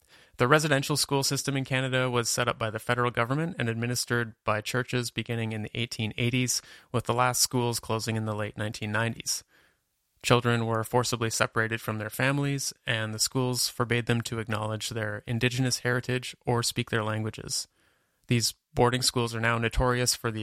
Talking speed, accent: 175 wpm, American